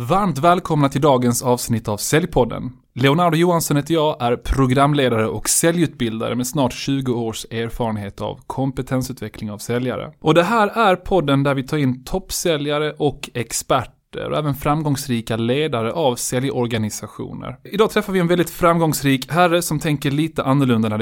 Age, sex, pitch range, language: 20-39, male, 125-165 Hz, Swedish